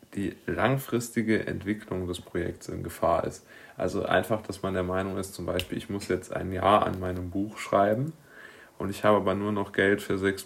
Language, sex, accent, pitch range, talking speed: German, male, German, 90-110 Hz, 200 wpm